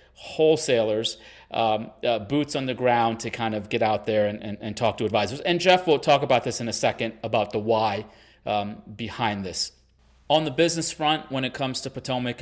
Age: 30-49